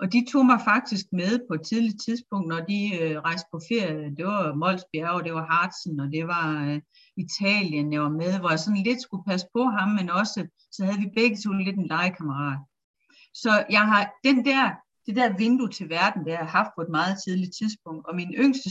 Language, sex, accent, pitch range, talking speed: Danish, female, native, 175-235 Hz, 235 wpm